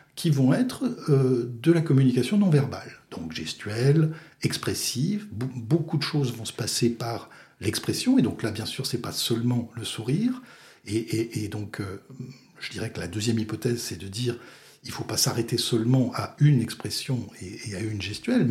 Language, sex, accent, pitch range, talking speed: French, male, French, 115-150 Hz, 190 wpm